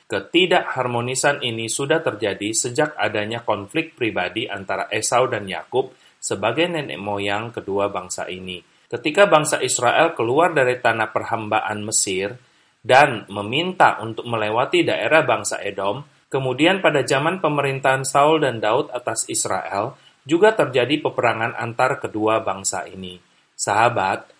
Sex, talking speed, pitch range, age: male, 125 wpm, 105-150 Hz, 30-49